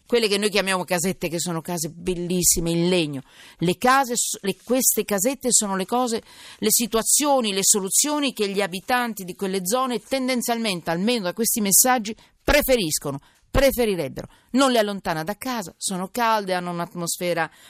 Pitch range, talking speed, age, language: 160-220 Hz, 150 wpm, 40-59, Italian